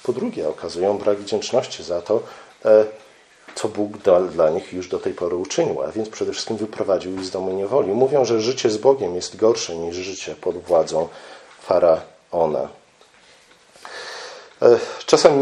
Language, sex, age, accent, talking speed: Polish, male, 40-59, native, 150 wpm